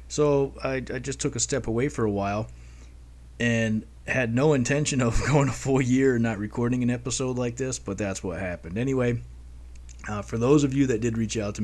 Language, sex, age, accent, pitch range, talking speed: English, male, 20-39, American, 100-130 Hz, 215 wpm